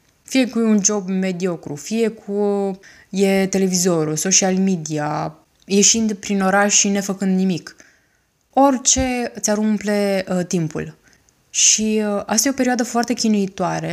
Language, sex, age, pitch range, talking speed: Romanian, female, 20-39, 190-220 Hz, 130 wpm